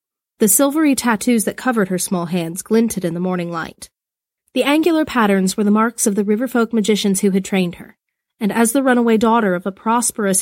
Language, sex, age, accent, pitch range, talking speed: English, female, 30-49, American, 190-240 Hz, 200 wpm